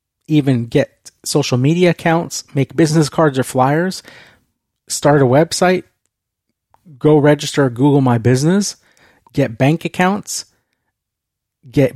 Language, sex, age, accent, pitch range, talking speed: English, male, 30-49, American, 125-155 Hz, 115 wpm